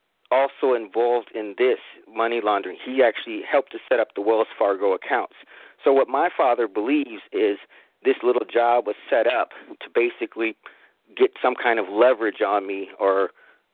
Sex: male